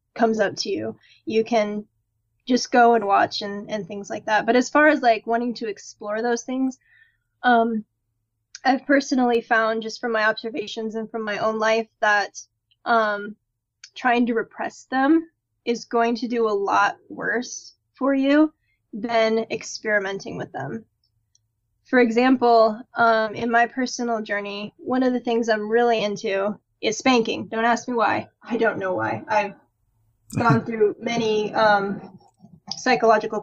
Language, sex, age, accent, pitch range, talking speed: English, female, 10-29, American, 205-235 Hz, 155 wpm